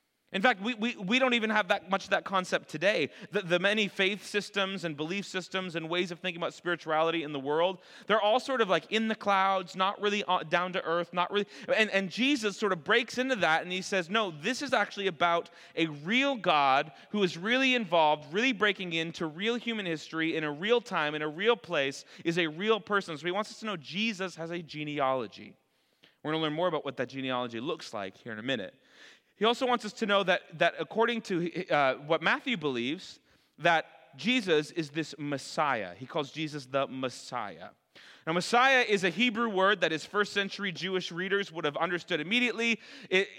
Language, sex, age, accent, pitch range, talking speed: English, male, 30-49, American, 165-215 Hz, 210 wpm